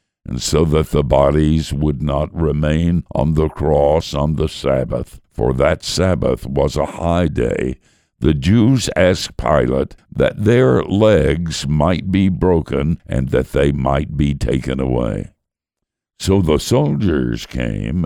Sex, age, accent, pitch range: male, 60-79, American, 70-90 Hz